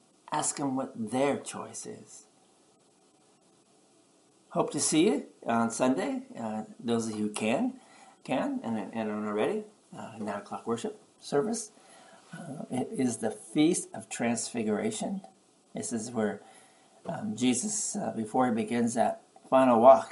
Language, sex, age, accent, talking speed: English, male, 50-69, American, 140 wpm